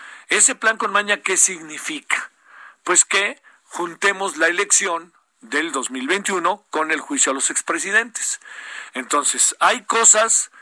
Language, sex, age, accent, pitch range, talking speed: Spanish, male, 50-69, Mexican, 190-230 Hz, 125 wpm